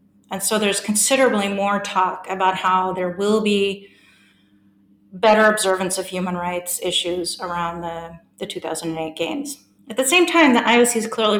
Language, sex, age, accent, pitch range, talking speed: English, female, 40-59, American, 175-215 Hz, 160 wpm